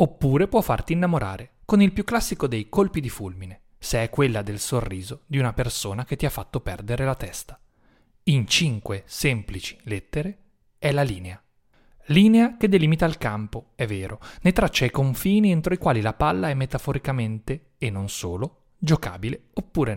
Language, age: Italian, 30-49